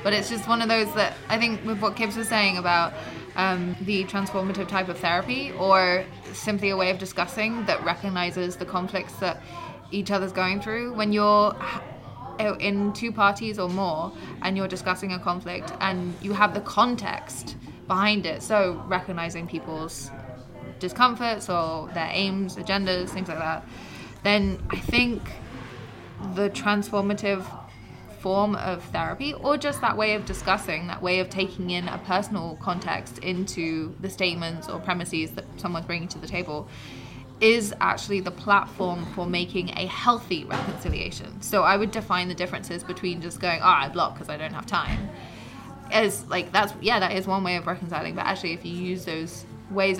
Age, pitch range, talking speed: 20-39, 170-200 Hz, 170 wpm